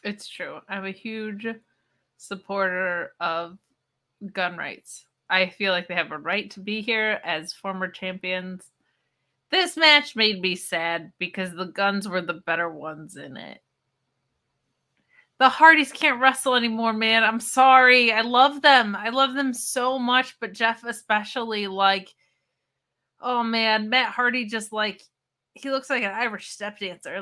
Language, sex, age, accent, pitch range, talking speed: English, female, 20-39, American, 185-245 Hz, 150 wpm